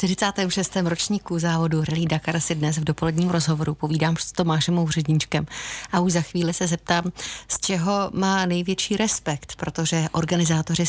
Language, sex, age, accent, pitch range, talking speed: Czech, female, 30-49, native, 160-200 Hz, 155 wpm